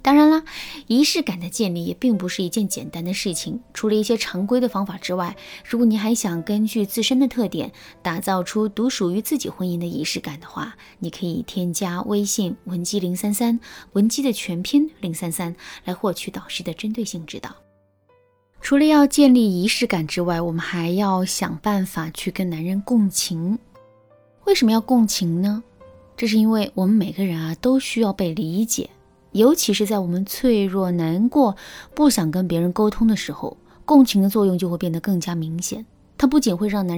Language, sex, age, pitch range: Chinese, female, 20-39, 175-225 Hz